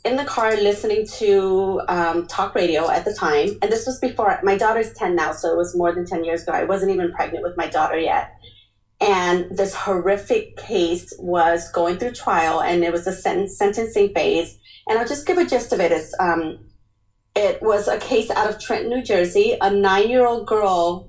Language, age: English, 30-49